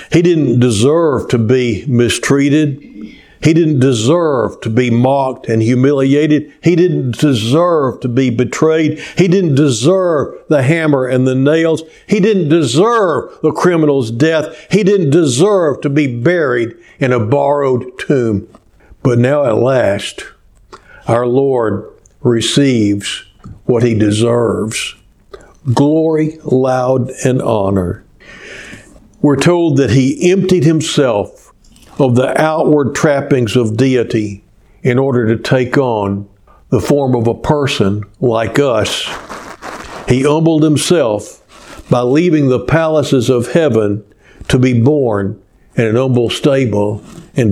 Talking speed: 125 wpm